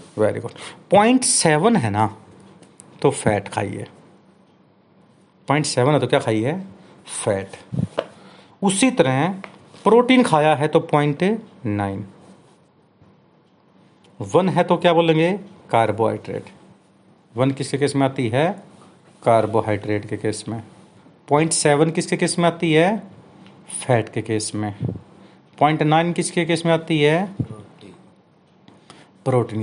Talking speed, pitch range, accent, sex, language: 120 wpm, 110-165 Hz, native, male, Hindi